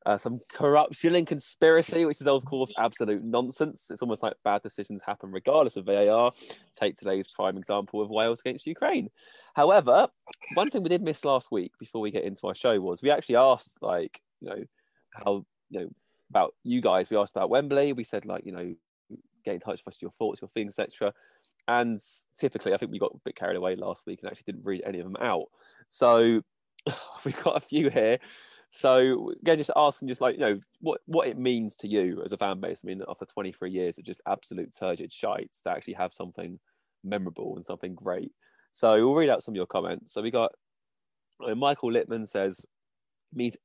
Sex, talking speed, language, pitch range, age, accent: male, 210 wpm, English, 105-140 Hz, 20-39, British